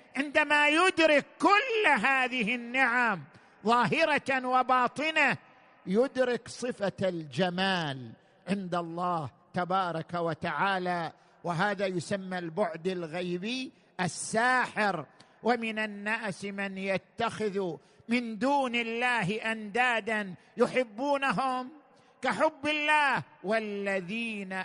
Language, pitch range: Arabic, 185-250 Hz